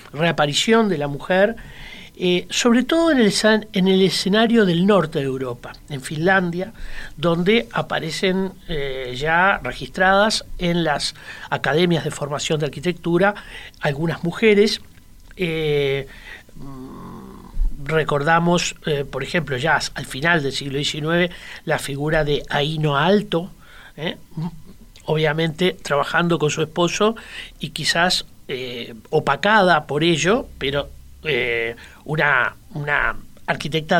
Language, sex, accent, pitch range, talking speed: Spanish, male, Argentinian, 140-180 Hz, 115 wpm